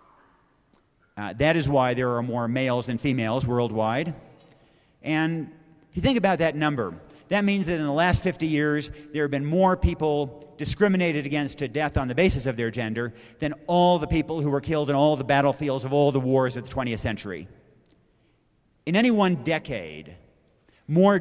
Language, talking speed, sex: English, 185 wpm, male